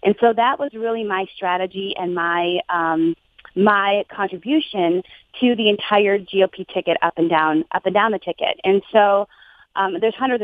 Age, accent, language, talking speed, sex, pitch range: 30-49, American, English, 170 wpm, female, 180-230 Hz